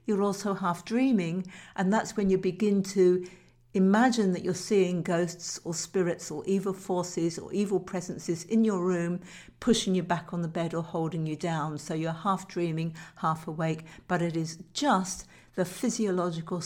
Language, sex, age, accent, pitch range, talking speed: Italian, female, 60-79, British, 165-195 Hz, 175 wpm